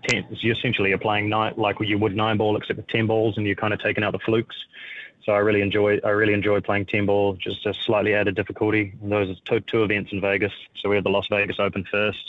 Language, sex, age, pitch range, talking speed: English, male, 20-39, 100-110 Hz, 255 wpm